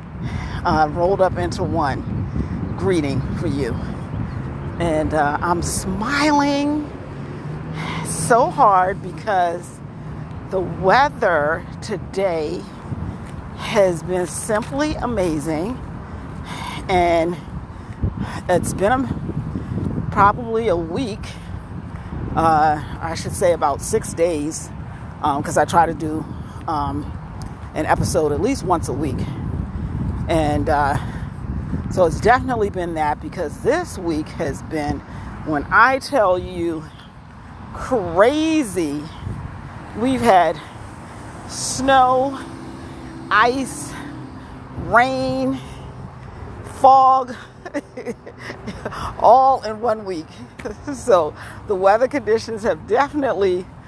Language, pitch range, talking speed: English, 165-255 Hz, 90 wpm